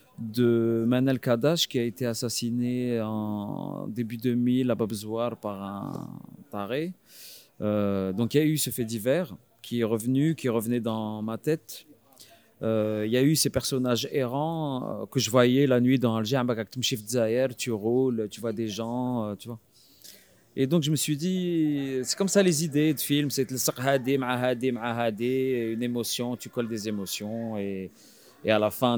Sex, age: male, 30-49